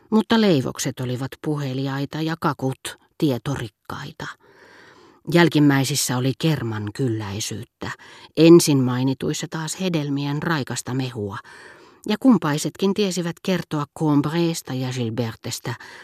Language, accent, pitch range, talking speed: Finnish, native, 125-155 Hz, 90 wpm